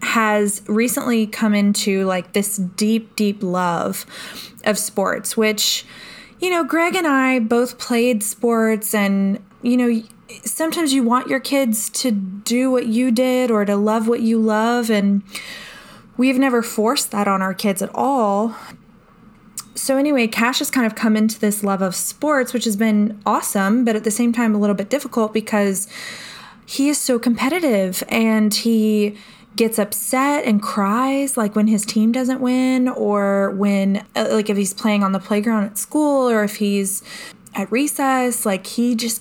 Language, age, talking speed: English, 20-39, 170 wpm